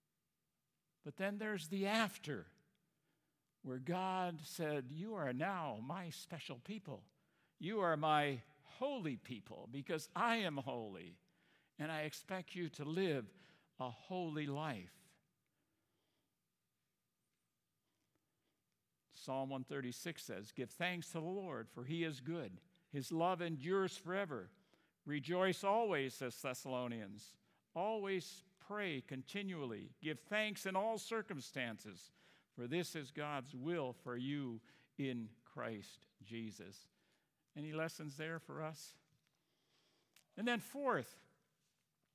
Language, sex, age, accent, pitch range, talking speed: English, male, 60-79, American, 140-190 Hz, 110 wpm